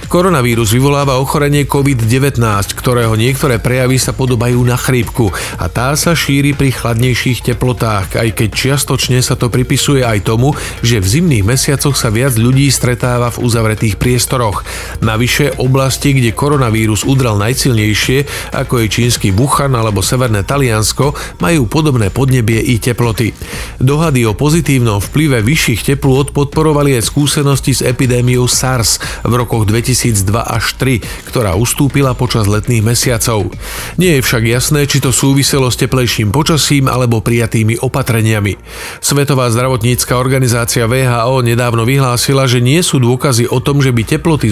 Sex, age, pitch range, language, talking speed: male, 40-59, 115-135 Hz, Slovak, 145 wpm